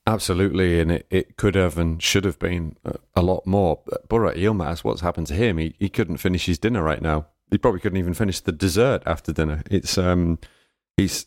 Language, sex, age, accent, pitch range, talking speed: English, male, 30-49, British, 85-100 Hz, 215 wpm